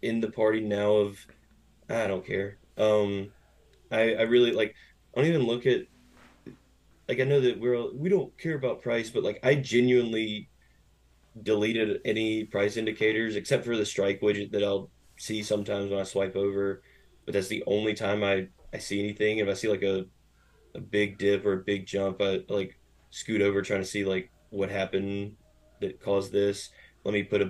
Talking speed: 190 wpm